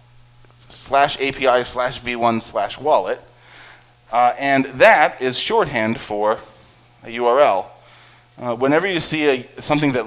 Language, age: English, 30-49